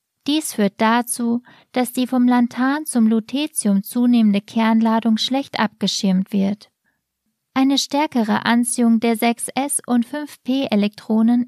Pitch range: 220-255 Hz